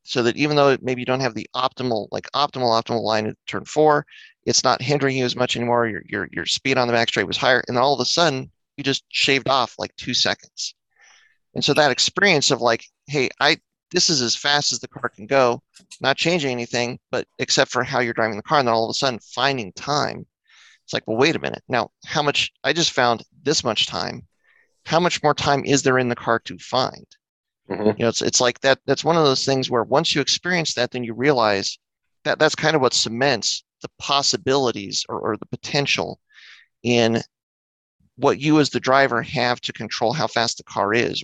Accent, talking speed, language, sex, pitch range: American, 225 wpm, English, male, 115-145 Hz